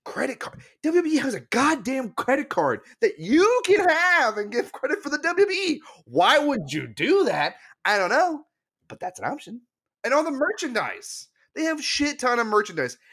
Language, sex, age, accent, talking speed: English, male, 30-49, American, 185 wpm